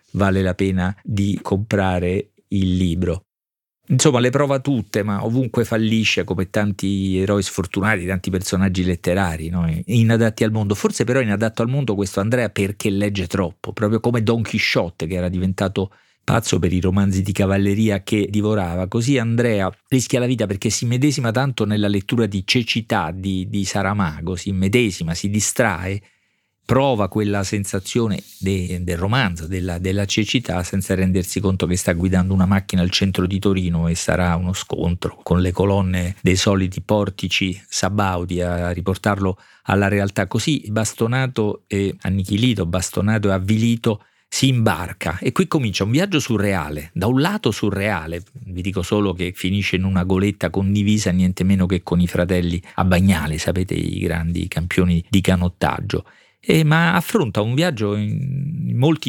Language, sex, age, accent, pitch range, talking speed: Italian, male, 40-59, native, 95-115 Hz, 155 wpm